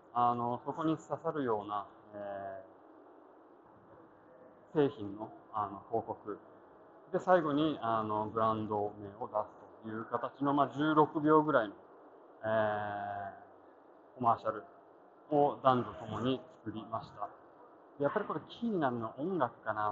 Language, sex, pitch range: Japanese, male, 110-140 Hz